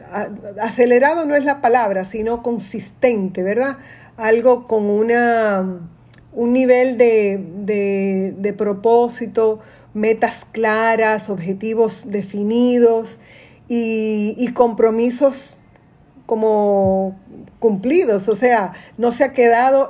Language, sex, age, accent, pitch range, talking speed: Spanish, female, 40-59, American, 210-250 Hz, 95 wpm